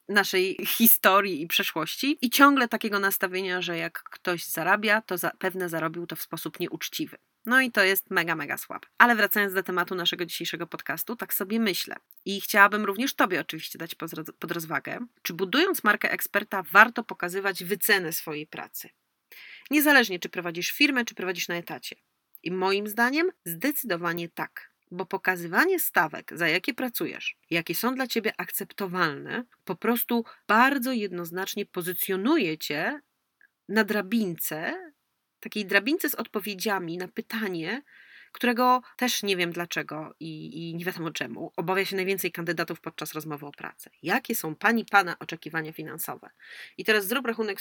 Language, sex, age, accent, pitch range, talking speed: Polish, female, 30-49, native, 175-240 Hz, 150 wpm